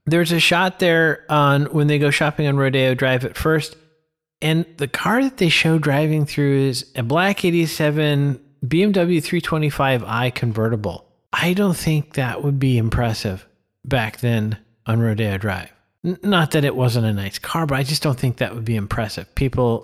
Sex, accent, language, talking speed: male, American, English, 175 wpm